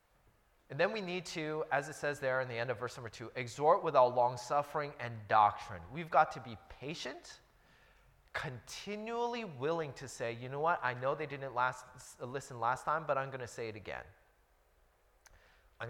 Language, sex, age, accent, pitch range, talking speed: English, male, 30-49, American, 125-180 Hz, 195 wpm